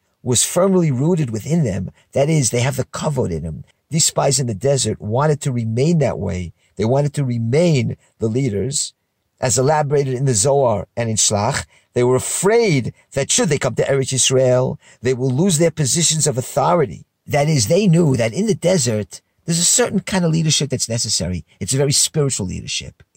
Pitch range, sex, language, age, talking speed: 120-170 Hz, male, English, 50-69, 195 wpm